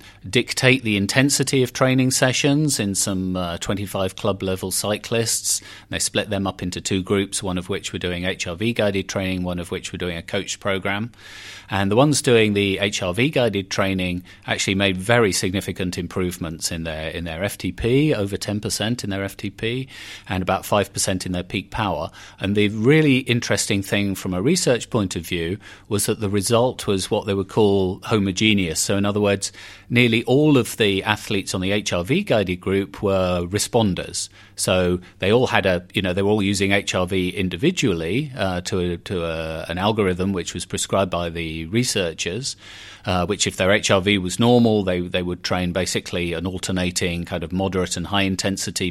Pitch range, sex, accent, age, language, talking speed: 90-105 Hz, male, British, 30-49, English, 185 wpm